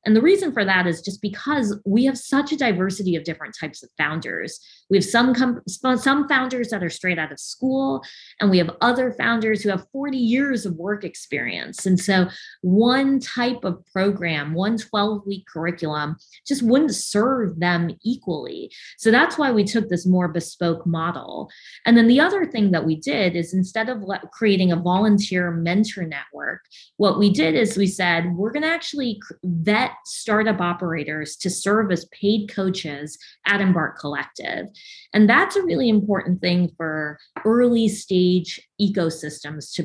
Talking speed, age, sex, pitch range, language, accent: 170 wpm, 20-39, female, 175-235 Hz, English, American